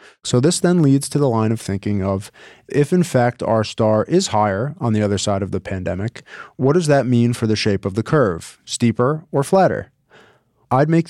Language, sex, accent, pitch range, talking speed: English, male, American, 110-140 Hz, 210 wpm